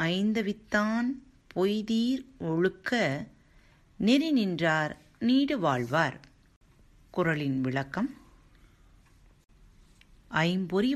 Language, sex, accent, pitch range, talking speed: Tamil, female, native, 140-225 Hz, 55 wpm